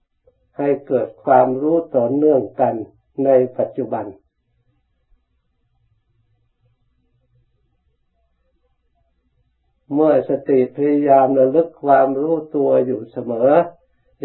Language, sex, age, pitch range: Thai, male, 60-79, 120-145 Hz